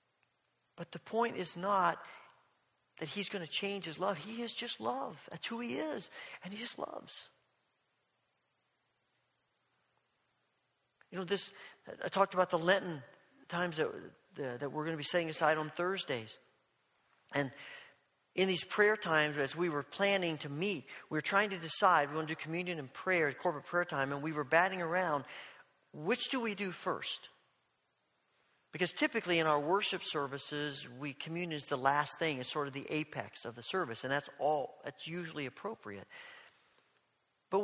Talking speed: 170 wpm